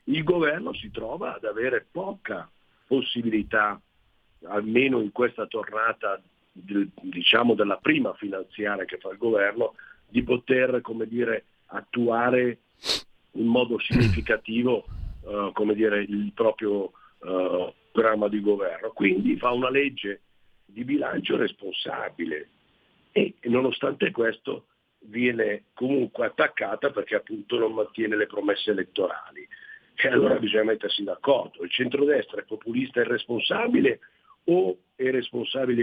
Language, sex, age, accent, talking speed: Italian, male, 50-69, native, 120 wpm